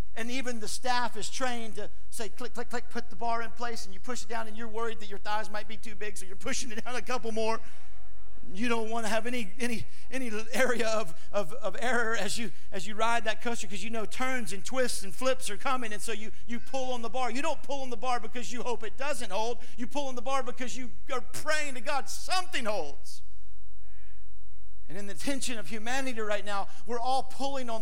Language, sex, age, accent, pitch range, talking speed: English, male, 50-69, American, 205-255 Hz, 245 wpm